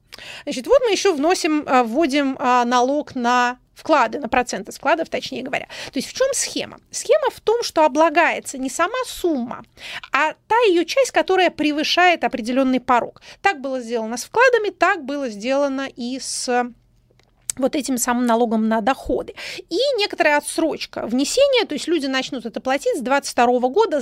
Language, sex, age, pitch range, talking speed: Russian, female, 30-49, 240-310 Hz, 160 wpm